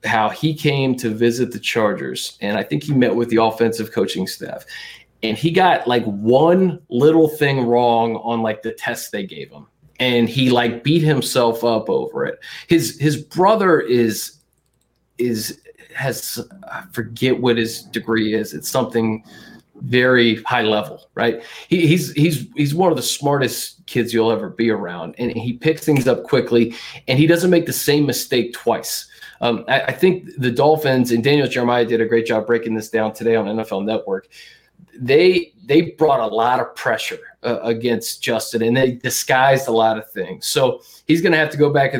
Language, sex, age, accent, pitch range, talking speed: English, male, 20-39, American, 115-160 Hz, 185 wpm